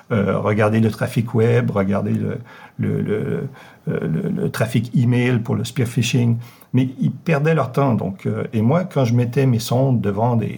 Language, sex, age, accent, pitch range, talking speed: French, male, 50-69, French, 110-145 Hz, 195 wpm